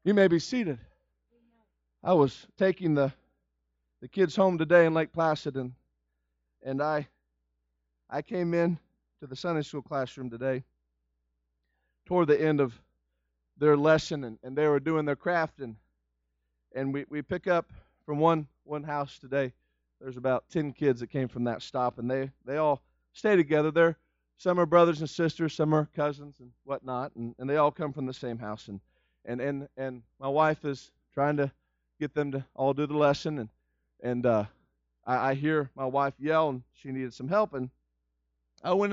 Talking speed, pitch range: 185 wpm, 120-165 Hz